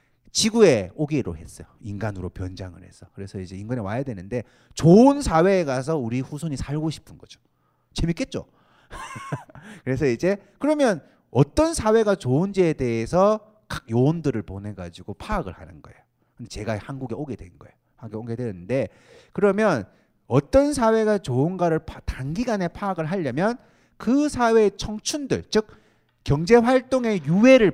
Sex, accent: male, native